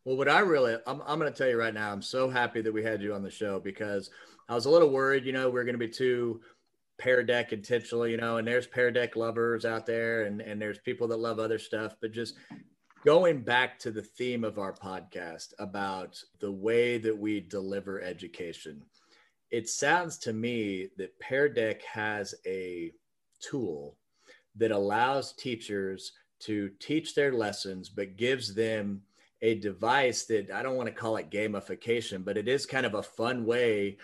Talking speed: 195 wpm